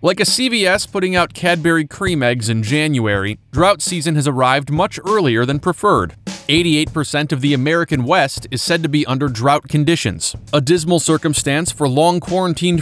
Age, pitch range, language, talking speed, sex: 30-49, 125-170 Hz, English, 165 wpm, male